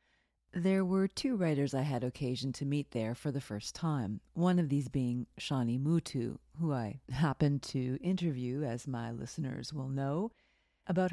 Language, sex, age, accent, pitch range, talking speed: English, female, 40-59, American, 130-170 Hz, 165 wpm